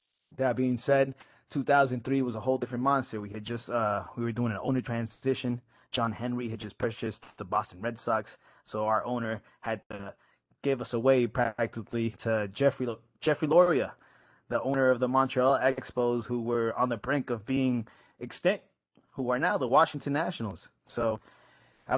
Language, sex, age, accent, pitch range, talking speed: English, male, 20-39, American, 110-130 Hz, 170 wpm